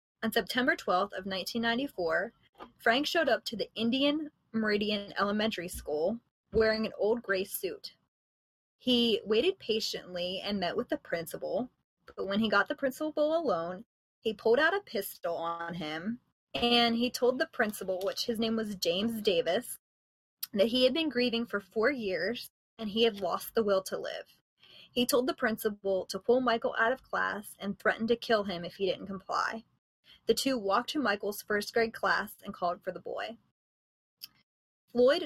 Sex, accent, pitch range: female, American, 190-245 Hz